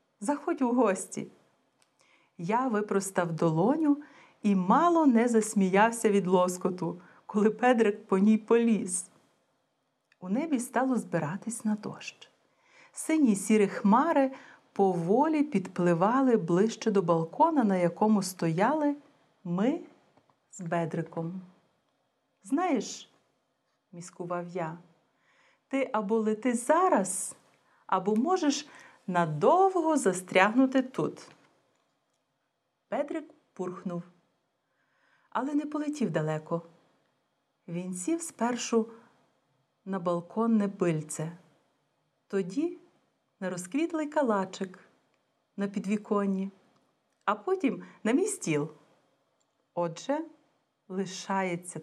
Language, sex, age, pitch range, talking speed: Bulgarian, female, 40-59, 175-260 Hz, 85 wpm